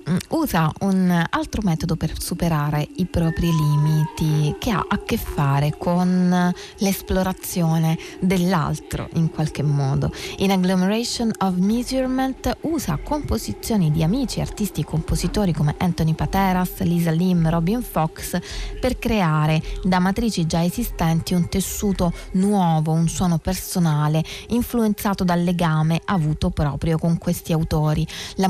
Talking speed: 125 wpm